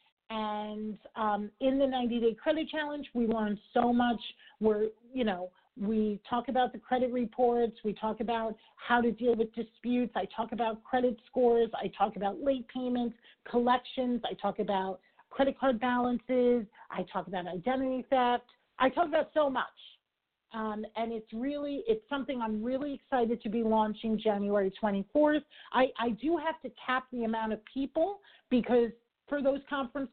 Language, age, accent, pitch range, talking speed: English, 40-59, American, 215-250 Hz, 165 wpm